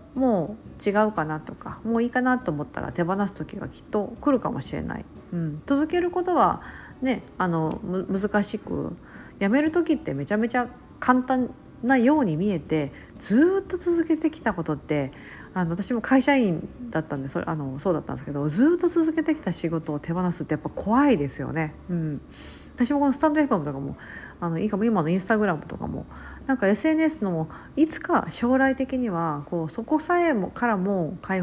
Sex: female